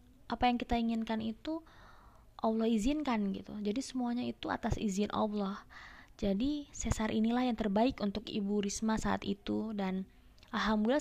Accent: native